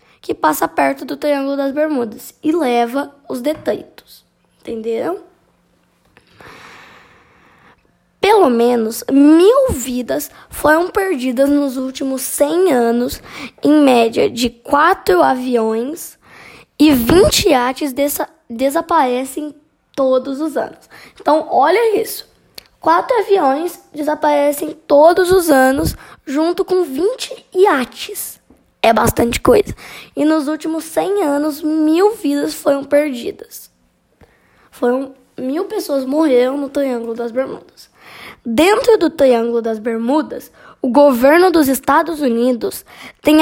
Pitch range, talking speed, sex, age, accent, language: 255-340 Hz, 110 wpm, female, 10-29, Brazilian, Portuguese